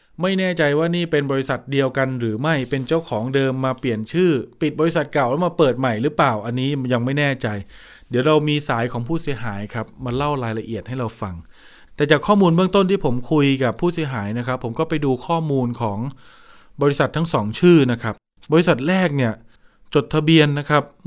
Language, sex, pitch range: Thai, male, 120-155 Hz